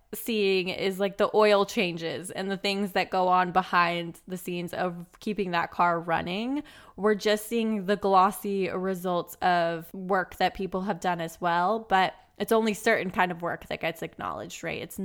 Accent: American